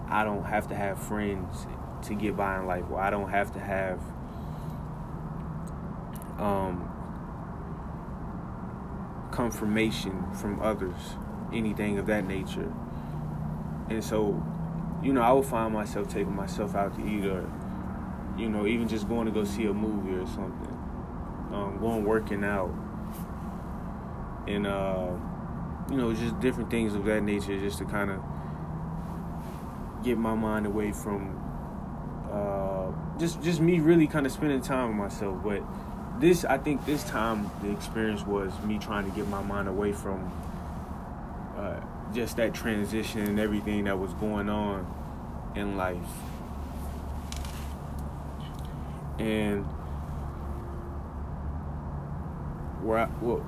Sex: male